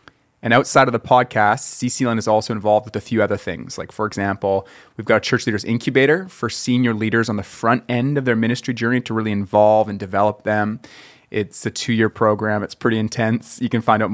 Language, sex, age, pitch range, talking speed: English, male, 30-49, 105-120 Hz, 215 wpm